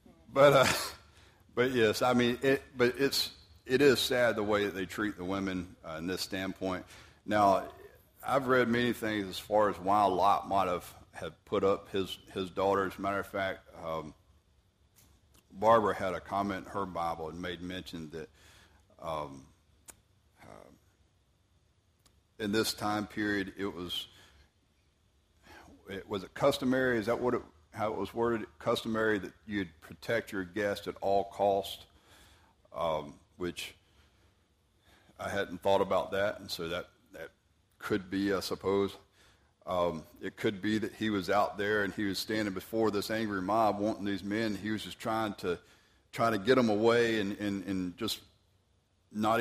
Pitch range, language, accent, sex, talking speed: 90-110 Hz, English, American, male, 165 wpm